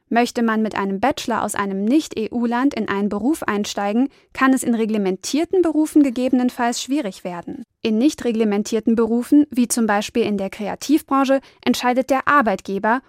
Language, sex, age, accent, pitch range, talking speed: German, female, 20-39, German, 215-265 Hz, 150 wpm